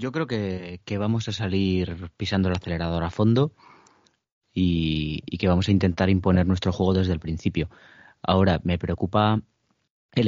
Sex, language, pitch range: male, Spanish, 85-100 Hz